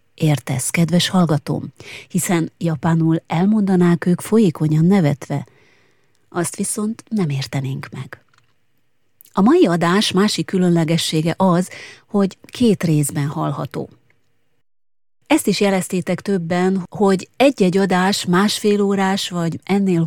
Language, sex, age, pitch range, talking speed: Hungarian, female, 30-49, 150-195 Hz, 105 wpm